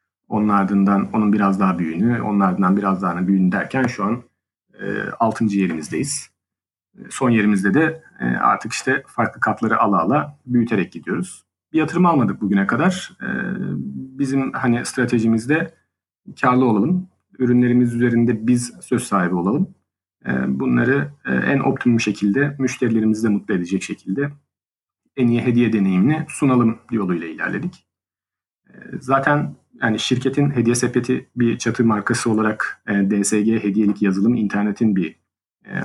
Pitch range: 95-125 Hz